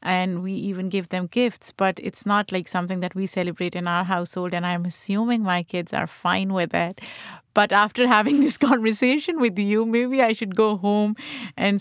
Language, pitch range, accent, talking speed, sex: English, 185-230 Hz, Indian, 200 wpm, female